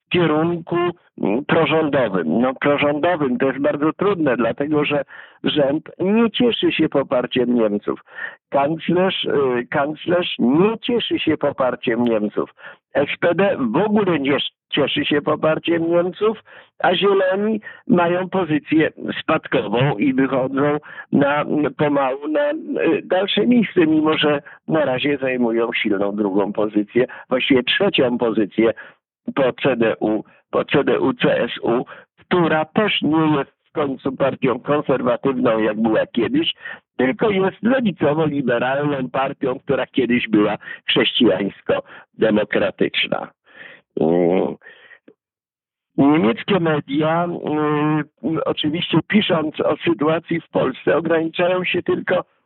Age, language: 50-69, Polish